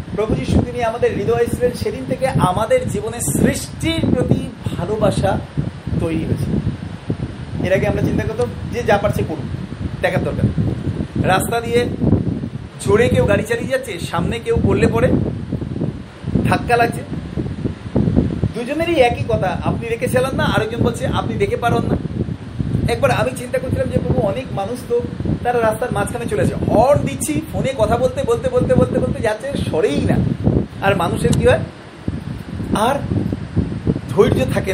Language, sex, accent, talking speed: Bengali, male, native, 120 wpm